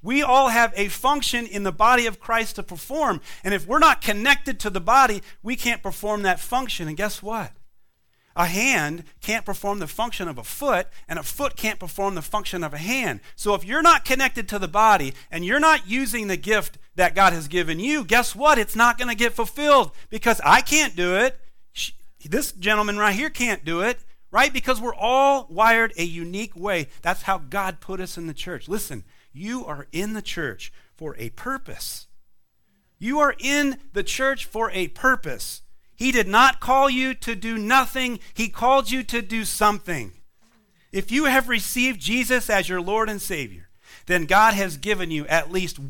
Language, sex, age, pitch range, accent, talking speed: English, male, 40-59, 165-245 Hz, American, 195 wpm